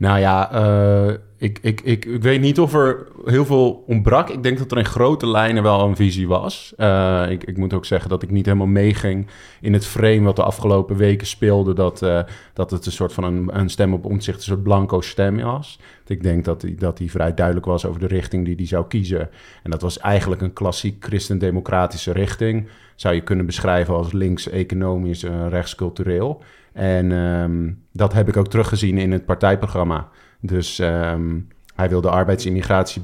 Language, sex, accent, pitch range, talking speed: Dutch, male, Dutch, 90-105 Hz, 200 wpm